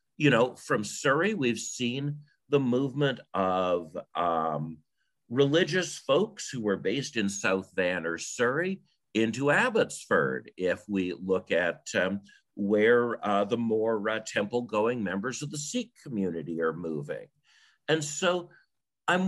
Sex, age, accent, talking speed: male, 50-69, American, 135 wpm